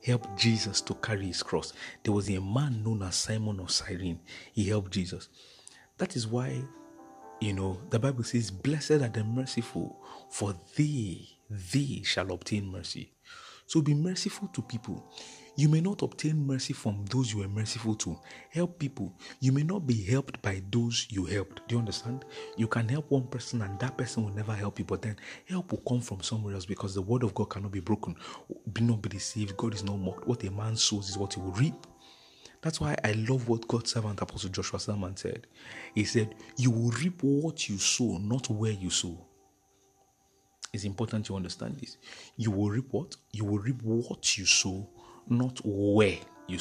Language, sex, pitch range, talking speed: English, male, 100-125 Hz, 195 wpm